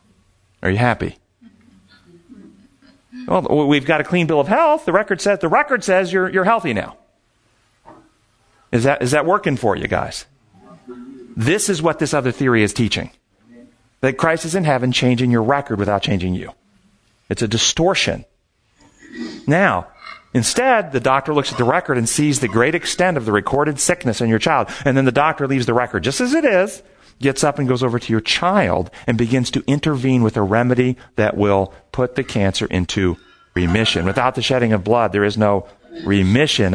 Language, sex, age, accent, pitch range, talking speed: English, male, 40-59, American, 110-155 Hz, 185 wpm